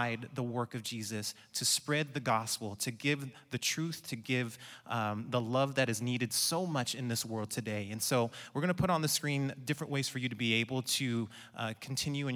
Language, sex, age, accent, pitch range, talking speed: English, male, 30-49, American, 120-145 Hz, 225 wpm